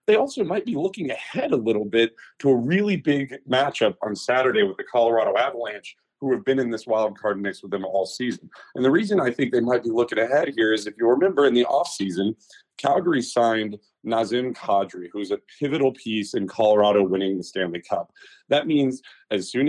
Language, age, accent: English, 30-49, American